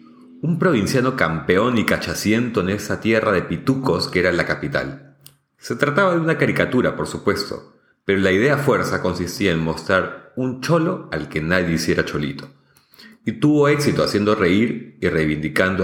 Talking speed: 160 wpm